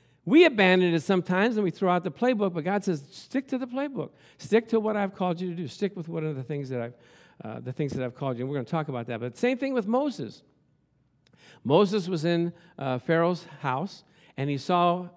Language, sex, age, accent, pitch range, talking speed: English, male, 50-69, American, 145-205 Hz, 225 wpm